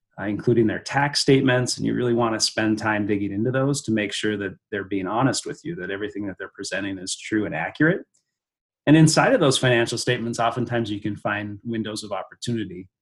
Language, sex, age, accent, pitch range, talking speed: English, male, 30-49, American, 100-115 Hz, 210 wpm